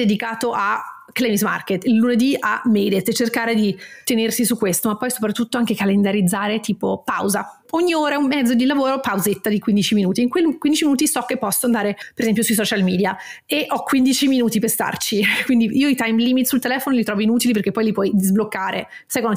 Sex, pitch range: female, 210-260 Hz